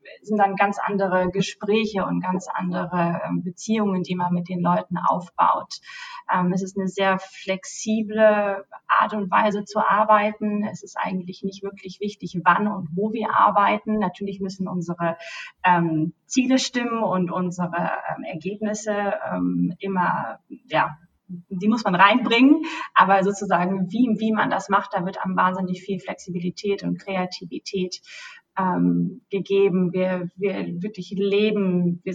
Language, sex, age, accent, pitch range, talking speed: German, female, 20-39, German, 185-210 Hz, 135 wpm